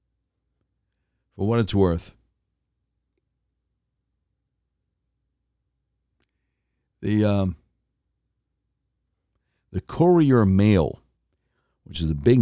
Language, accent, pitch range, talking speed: English, American, 85-110 Hz, 65 wpm